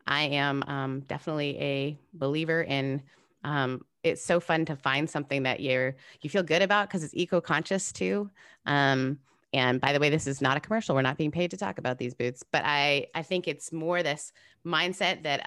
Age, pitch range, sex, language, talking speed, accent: 30-49, 135-165 Hz, female, English, 200 wpm, American